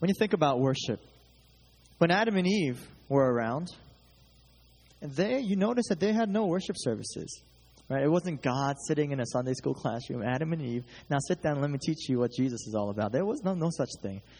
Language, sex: English, male